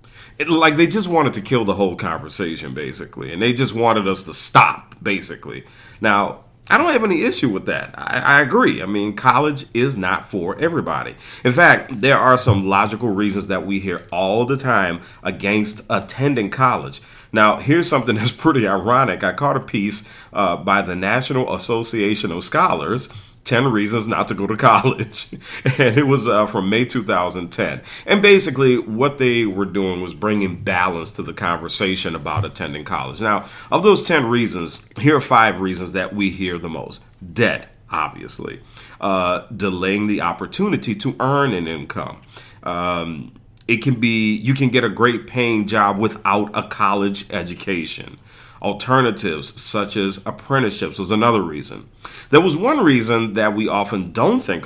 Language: English